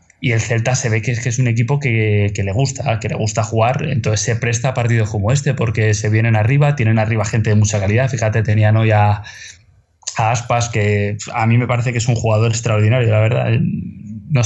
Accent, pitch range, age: Spanish, 110-135 Hz, 20-39